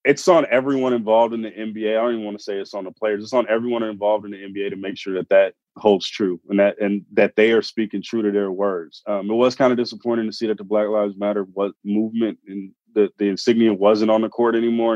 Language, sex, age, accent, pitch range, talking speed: English, male, 20-39, American, 100-115 Hz, 270 wpm